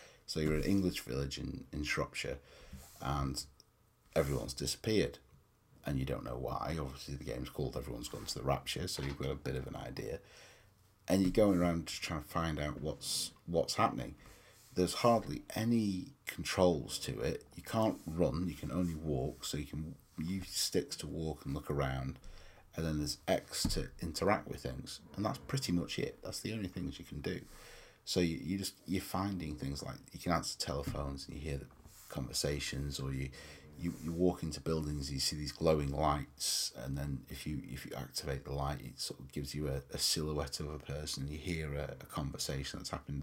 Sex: male